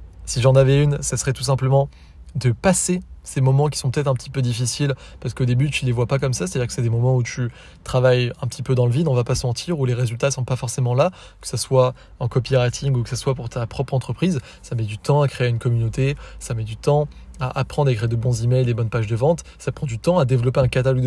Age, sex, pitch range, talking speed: 20-39, male, 120-140 Hz, 290 wpm